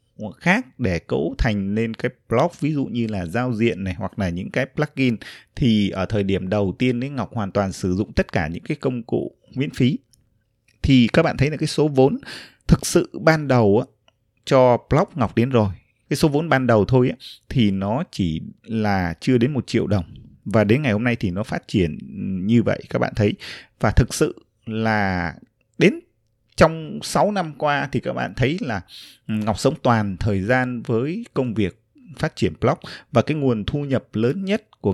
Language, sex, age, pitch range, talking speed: Vietnamese, male, 20-39, 105-135 Hz, 200 wpm